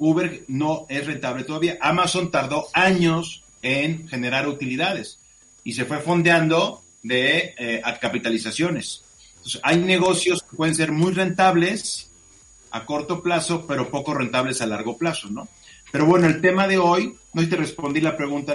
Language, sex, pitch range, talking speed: Spanish, male, 135-170 Hz, 150 wpm